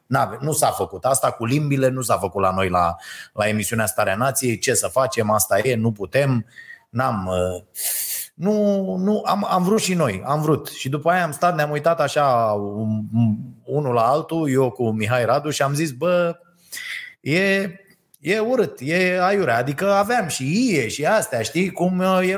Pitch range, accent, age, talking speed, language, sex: 115-180 Hz, native, 30-49, 180 wpm, Romanian, male